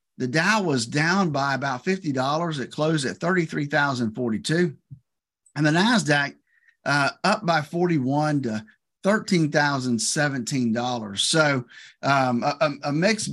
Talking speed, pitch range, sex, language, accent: 115 wpm, 130-170 Hz, male, English, American